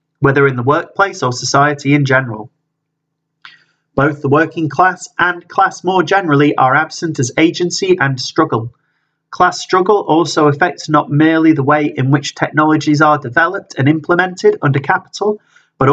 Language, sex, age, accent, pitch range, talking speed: English, male, 30-49, British, 140-175 Hz, 150 wpm